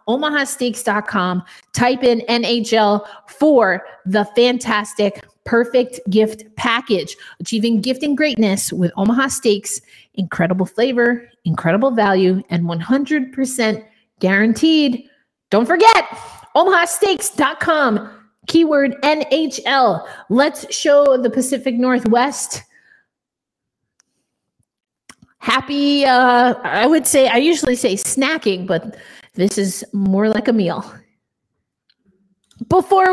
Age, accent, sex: 30-49, American, female